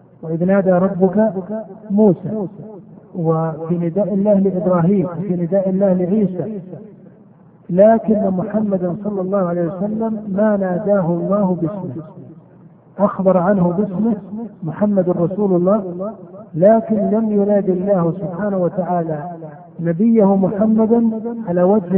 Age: 50-69